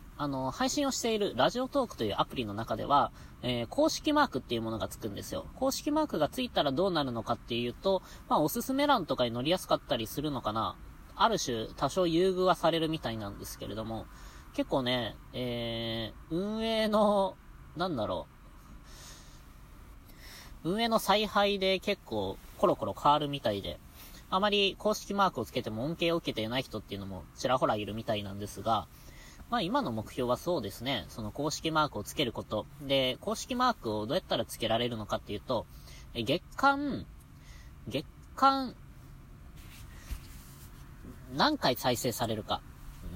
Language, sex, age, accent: Japanese, female, 20-39, native